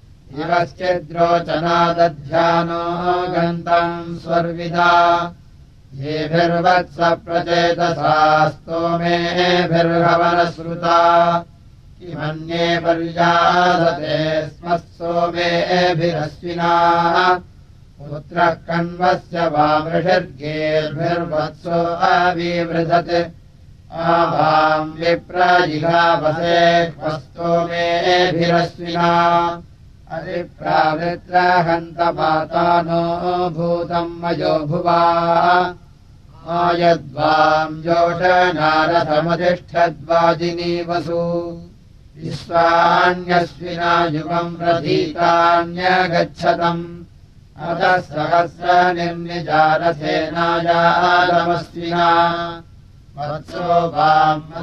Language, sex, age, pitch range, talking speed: Russian, male, 60-79, 160-170 Hz, 35 wpm